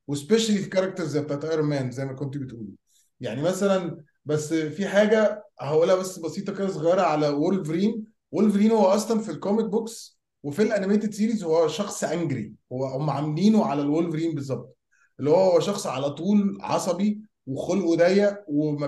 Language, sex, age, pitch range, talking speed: Arabic, male, 20-39, 150-200 Hz, 155 wpm